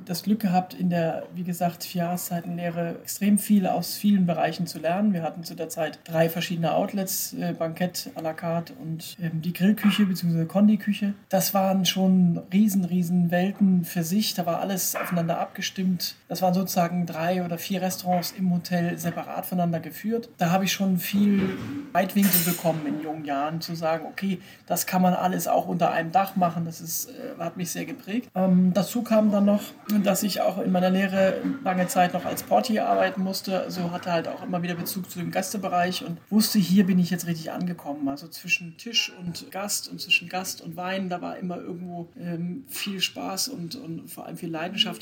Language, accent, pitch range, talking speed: German, German, 170-195 Hz, 200 wpm